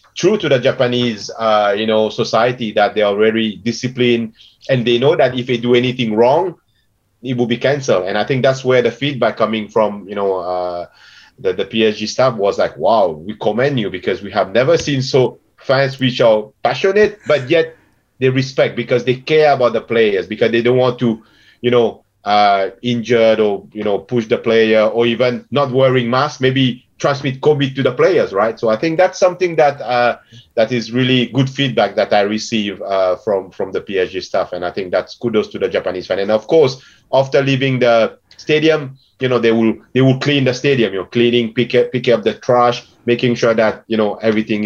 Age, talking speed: 30-49, 210 wpm